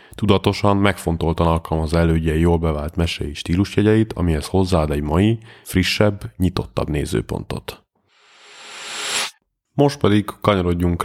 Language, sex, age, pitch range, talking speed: Hungarian, male, 30-49, 80-95 Hz, 100 wpm